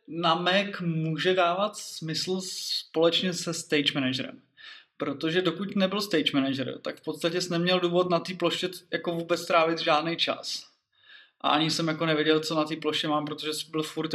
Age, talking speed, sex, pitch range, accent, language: 20-39, 175 wpm, male, 155-175 Hz, native, Czech